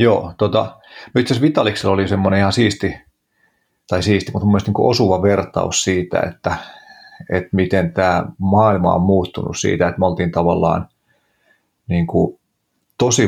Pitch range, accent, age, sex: 90-105 Hz, native, 30-49, male